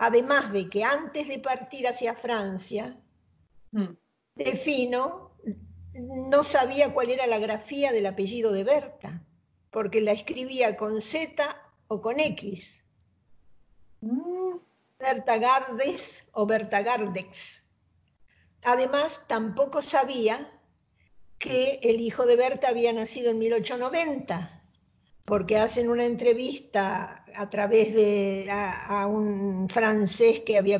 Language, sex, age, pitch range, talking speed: Spanish, female, 50-69, 200-255 Hz, 110 wpm